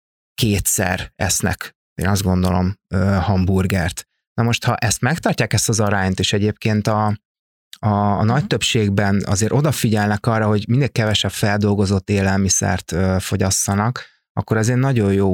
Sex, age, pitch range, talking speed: male, 30-49, 95-115 Hz, 135 wpm